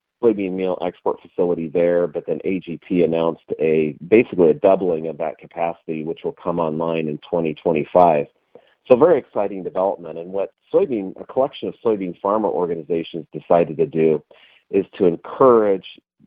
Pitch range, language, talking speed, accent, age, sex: 80-95 Hz, English, 150 wpm, American, 40-59, male